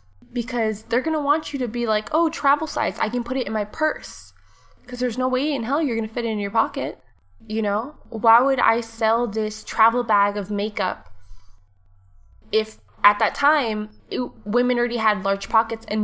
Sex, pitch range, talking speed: female, 200-245 Hz, 200 wpm